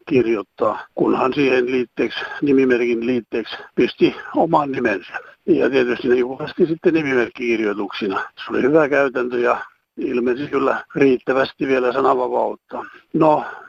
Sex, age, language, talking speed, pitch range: male, 60-79, Finnish, 110 wpm, 130-185 Hz